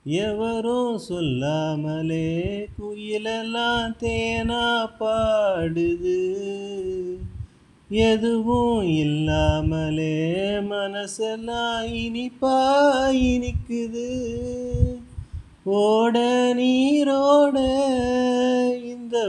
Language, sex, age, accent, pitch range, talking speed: Tamil, male, 30-49, native, 160-235 Hz, 35 wpm